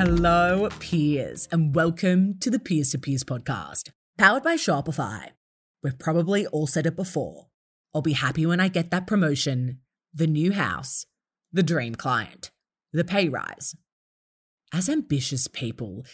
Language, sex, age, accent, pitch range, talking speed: English, female, 30-49, Australian, 125-170 Hz, 145 wpm